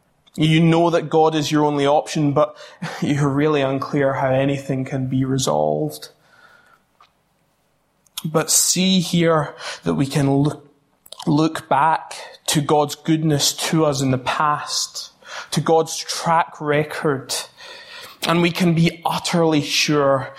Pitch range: 140-160 Hz